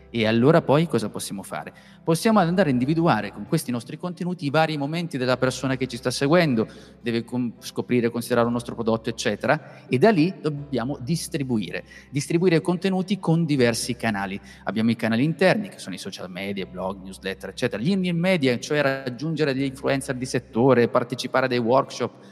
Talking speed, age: 170 wpm, 30-49